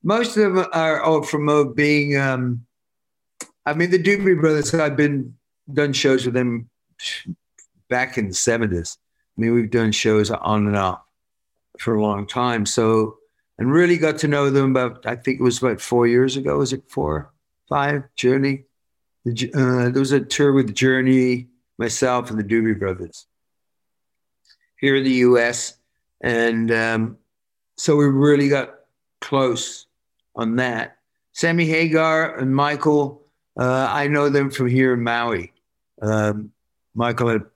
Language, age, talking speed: English, 50-69, 150 wpm